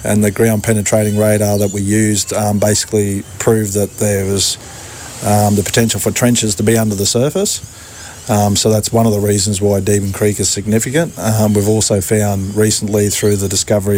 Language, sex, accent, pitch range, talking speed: English, male, Australian, 100-110 Hz, 190 wpm